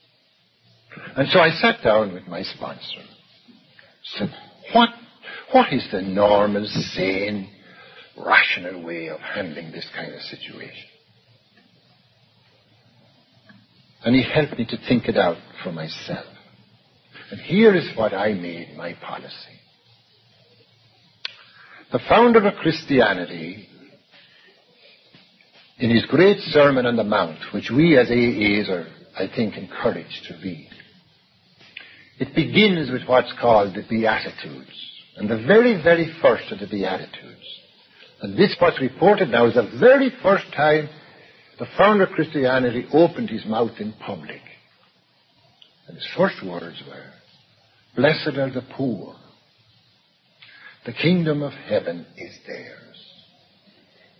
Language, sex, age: English, male, 60-79